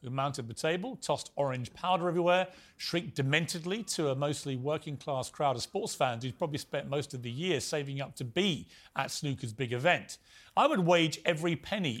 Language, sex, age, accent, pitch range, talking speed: English, male, 40-59, British, 130-180 Hz, 190 wpm